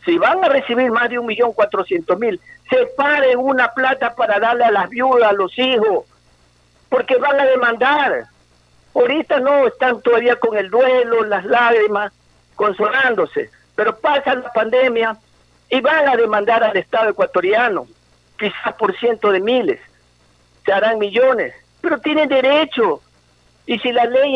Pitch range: 200-270 Hz